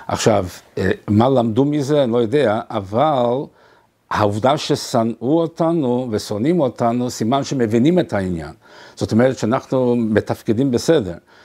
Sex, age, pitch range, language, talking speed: male, 60-79, 105-140 Hz, Hebrew, 115 wpm